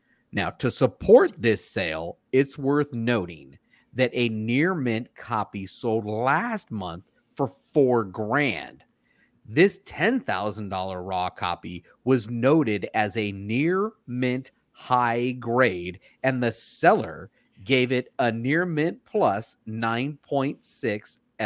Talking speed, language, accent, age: 115 wpm, English, American, 30-49